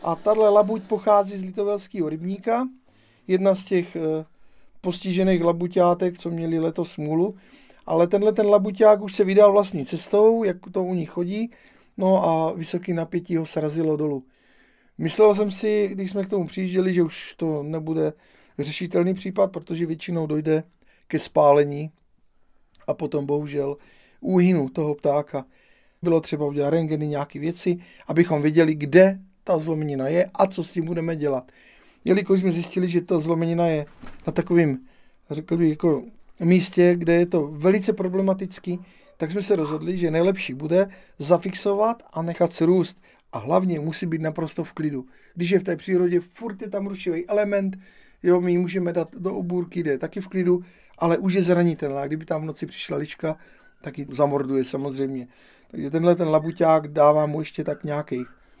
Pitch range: 155-190 Hz